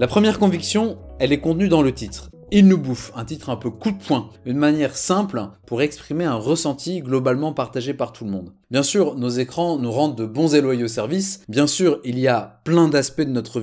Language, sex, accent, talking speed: French, male, French, 230 wpm